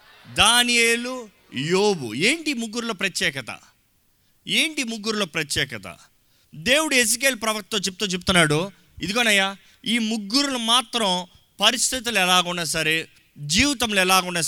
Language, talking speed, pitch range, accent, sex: Telugu, 95 wpm, 155-230 Hz, native, male